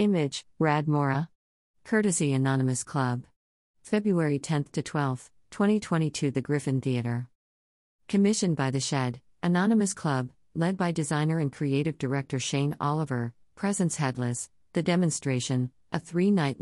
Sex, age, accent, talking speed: female, 50-69, American, 115 wpm